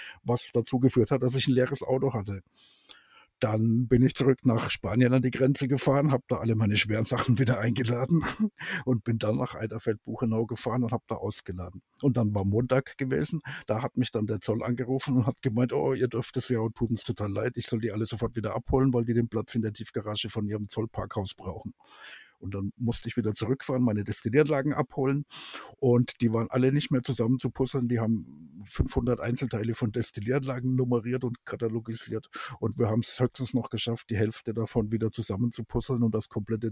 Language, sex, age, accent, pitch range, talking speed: German, male, 50-69, German, 110-130 Hz, 205 wpm